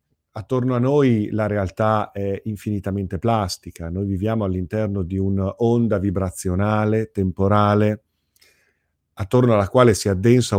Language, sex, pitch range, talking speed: Italian, male, 90-115 Hz, 115 wpm